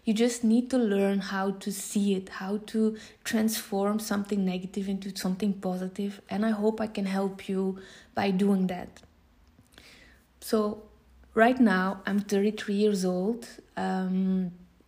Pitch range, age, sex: 190-225 Hz, 20-39, female